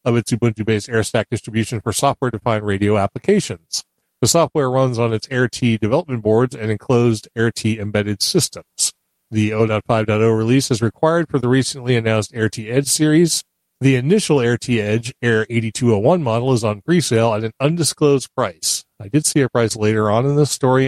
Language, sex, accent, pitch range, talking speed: English, male, American, 110-135 Hz, 165 wpm